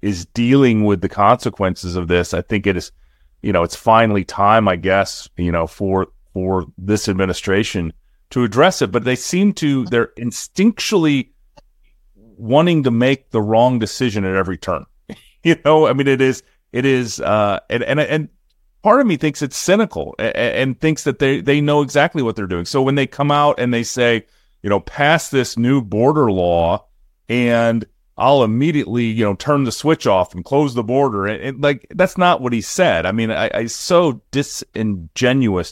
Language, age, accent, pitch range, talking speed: English, 30-49, American, 95-135 Hz, 190 wpm